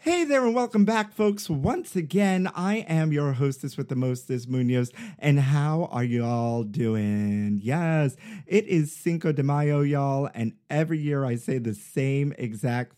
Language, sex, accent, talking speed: English, male, American, 170 wpm